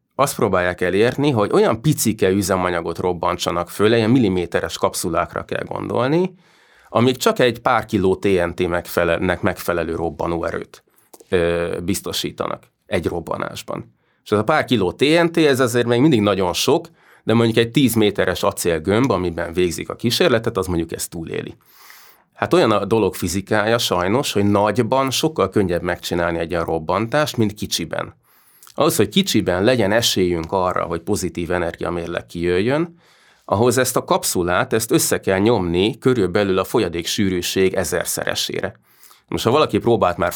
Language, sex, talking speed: Hungarian, male, 140 wpm